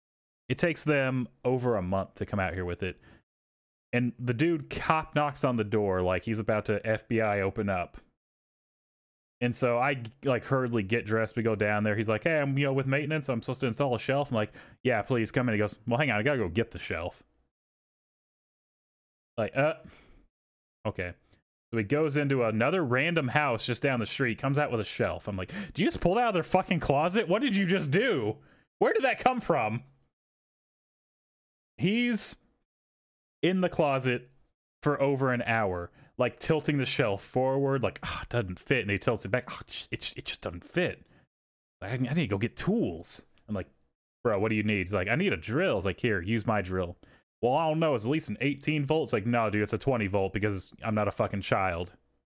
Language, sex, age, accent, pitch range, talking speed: English, male, 30-49, American, 105-145 Hz, 215 wpm